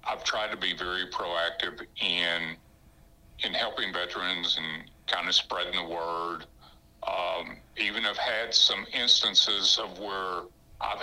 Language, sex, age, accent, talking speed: English, male, 60-79, American, 135 wpm